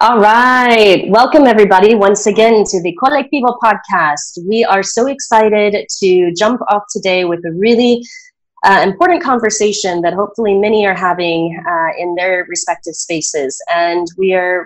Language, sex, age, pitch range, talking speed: English, female, 30-49, 175-220 Hz, 150 wpm